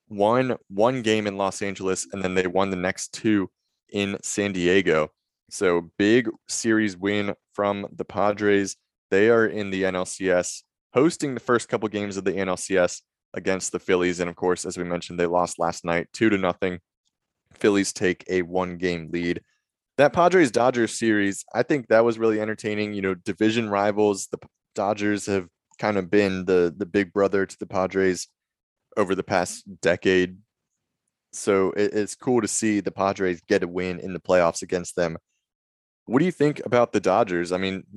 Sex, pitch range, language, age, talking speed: male, 90-105 Hz, English, 20-39, 180 wpm